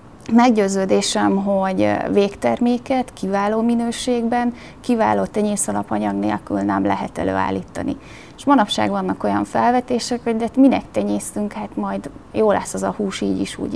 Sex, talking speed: female, 130 wpm